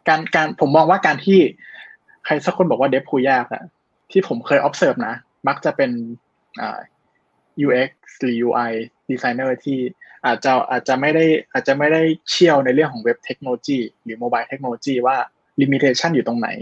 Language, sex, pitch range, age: Thai, male, 125-160 Hz, 20-39